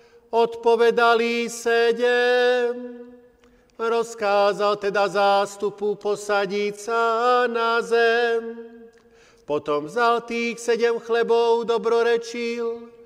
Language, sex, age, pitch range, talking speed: Slovak, male, 40-59, 210-235 Hz, 70 wpm